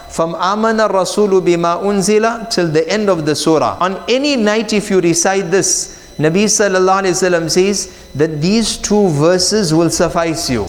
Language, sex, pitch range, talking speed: English, male, 180-225 Hz, 145 wpm